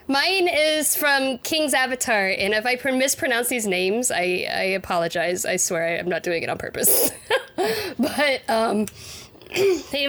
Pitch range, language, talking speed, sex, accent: 175-225 Hz, English, 150 wpm, female, American